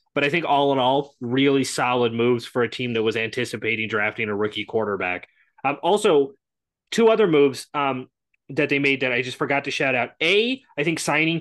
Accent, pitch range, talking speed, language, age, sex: American, 130-180 Hz, 205 wpm, English, 20-39, male